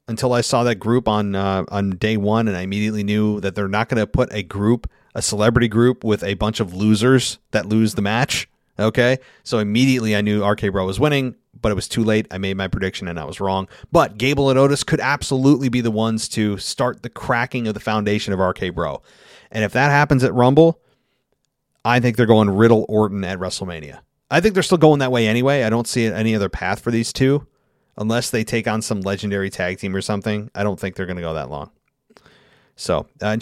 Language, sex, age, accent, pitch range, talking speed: English, male, 30-49, American, 105-135 Hz, 225 wpm